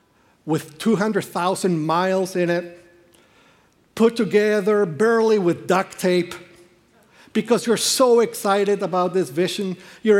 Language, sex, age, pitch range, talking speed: English, male, 50-69, 155-200 Hz, 110 wpm